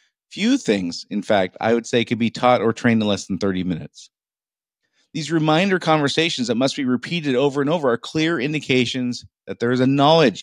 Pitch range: 115-165 Hz